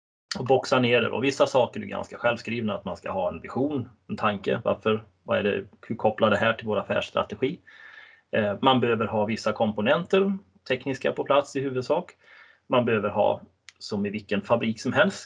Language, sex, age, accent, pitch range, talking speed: Swedish, male, 20-39, native, 105-140 Hz, 185 wpm